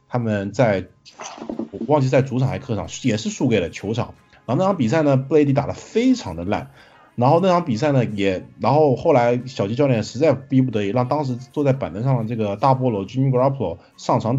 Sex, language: male, Chinese